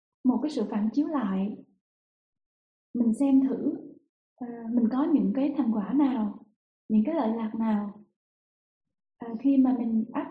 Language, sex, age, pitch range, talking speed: Vietnamese, female, 20-39, 225-280 Hz, 155 wpm